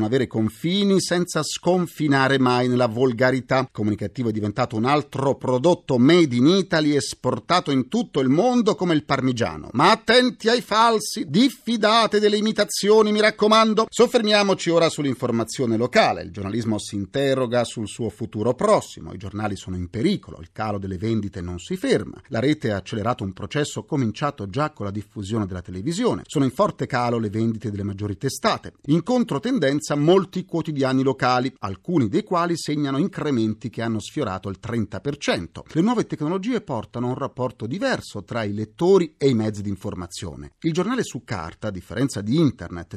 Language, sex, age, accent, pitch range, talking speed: Italian, male, 40-59, native, 105-170 Hz, 165 wpm